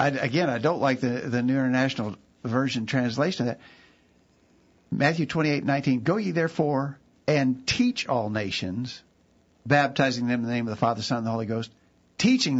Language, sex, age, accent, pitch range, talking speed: English, male, 60-79, American, 115-140 Hz, 180 wpm